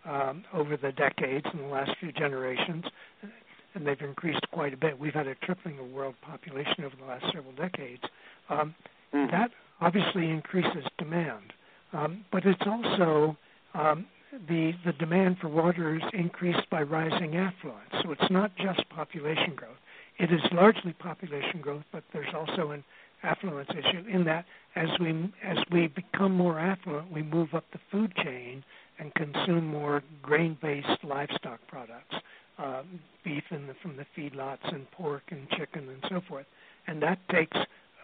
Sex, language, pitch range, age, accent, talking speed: male, English, 145-180 Hz, 60-79, American, 160 wpm